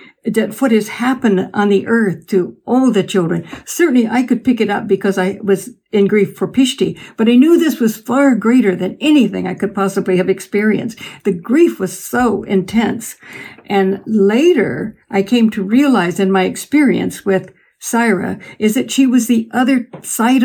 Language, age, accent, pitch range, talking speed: English, 60-79, American, 195-245 Hz, 180 wpm